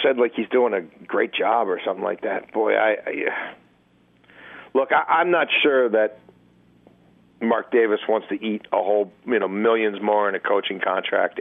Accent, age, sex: American, 50-69, male